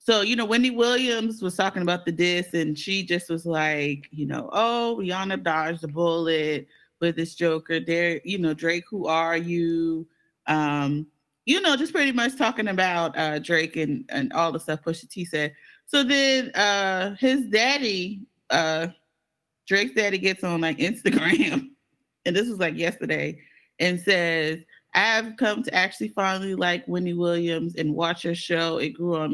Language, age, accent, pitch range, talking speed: English, 30-49, American, 160-195 Hz, 170 wpm